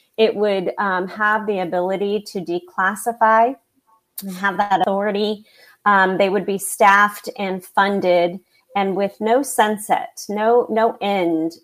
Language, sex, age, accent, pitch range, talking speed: English, female, 30-49, American, 175-215 Hz, 135 wpm